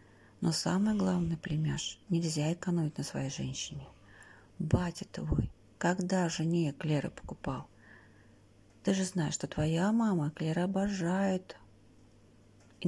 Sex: female